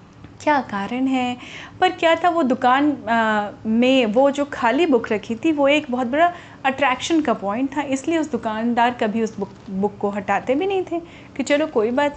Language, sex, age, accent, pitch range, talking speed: Hindi, female, 30-49, native, 210-280 Hz, 195 wpm